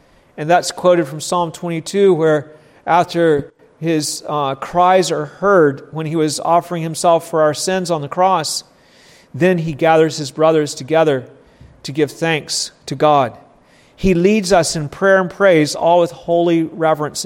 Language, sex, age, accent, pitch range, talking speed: English, male, 40-59, American, 150-175 Hz, 160 wpm